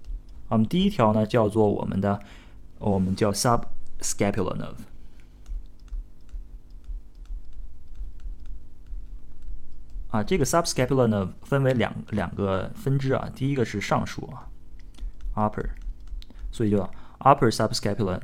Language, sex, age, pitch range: Chinese, male, 20-39, 85-115 Hz